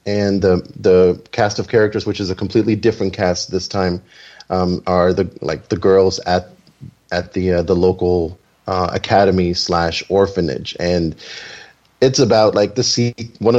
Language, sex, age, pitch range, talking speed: English, male, 30-49, 95-120 Hz, 165 wpm